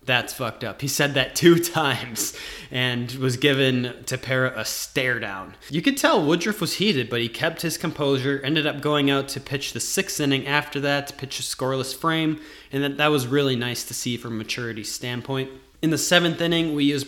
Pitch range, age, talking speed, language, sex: 130-155 Hz, 20-39, 205 wpm, English, male